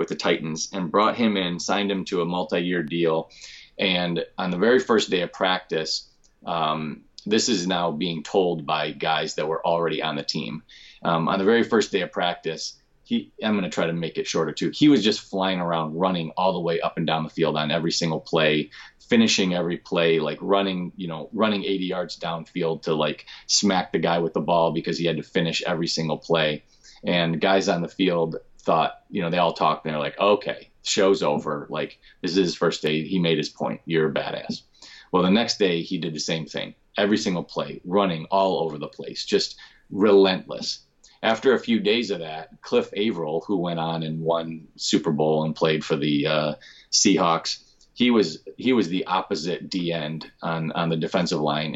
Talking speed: 210 wpm